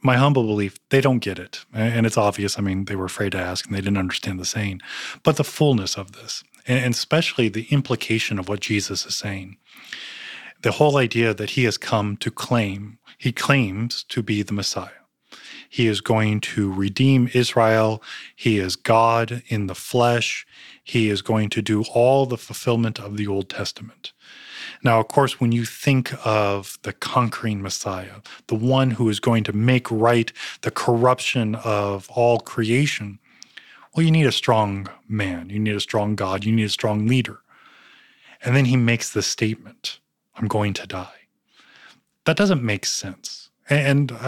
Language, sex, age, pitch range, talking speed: English, male, 20-39, 105-130 Hz, 175 wpm